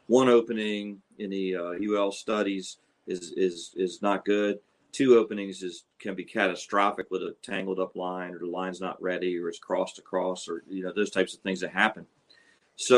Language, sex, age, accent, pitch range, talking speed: English, male, 40-59, American, 95-115 Hz, 195 wpm